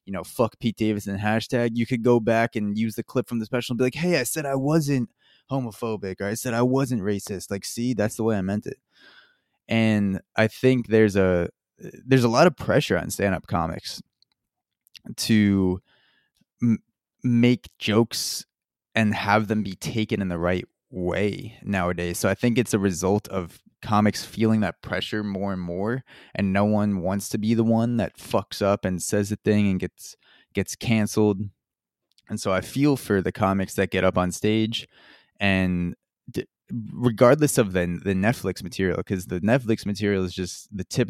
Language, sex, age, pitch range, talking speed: English, male, 20-39, 95-115 Hz, 185 wpm